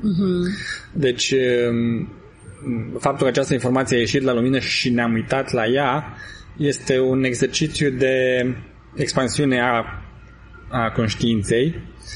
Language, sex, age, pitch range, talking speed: Romanian, male, 20-39, 115-135 Hz, 110 wpm